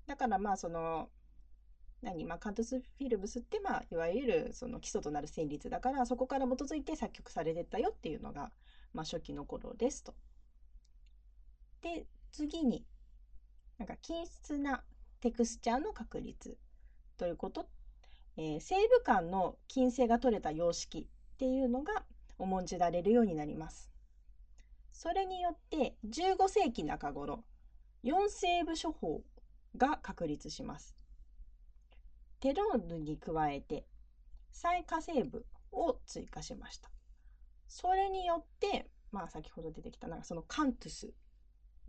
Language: Japanese